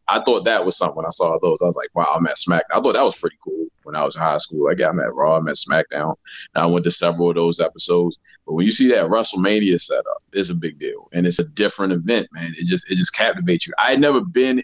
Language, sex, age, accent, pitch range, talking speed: English, male, 20-39, American, 95-125 Hz, 290 wpm